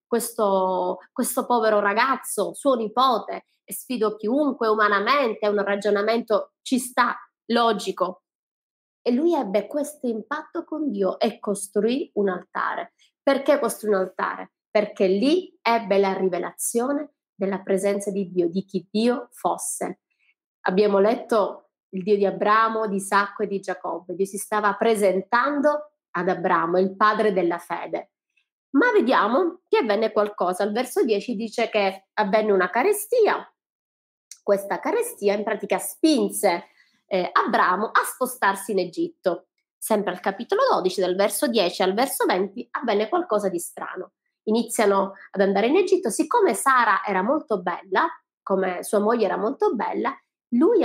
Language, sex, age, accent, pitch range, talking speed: Italian, female, 20-39, native, 195-255 Hz, 140 wpm